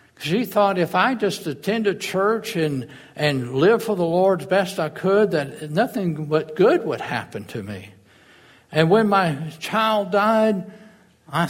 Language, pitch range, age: English, 120-160 Hz, 60-79